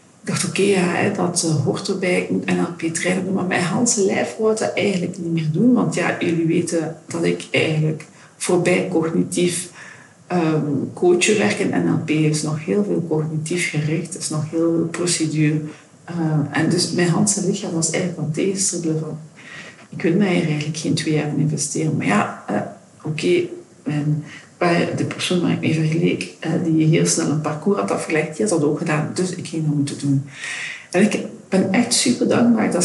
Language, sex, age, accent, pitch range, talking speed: Dutch, female, 50-69, Dutch, 155-185 Hz, 185 wpm